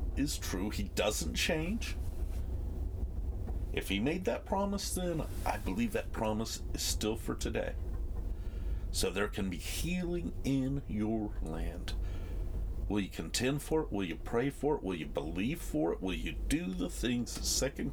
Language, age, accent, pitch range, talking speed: English, 50-69, American, 80-100 Hz, 160 wpm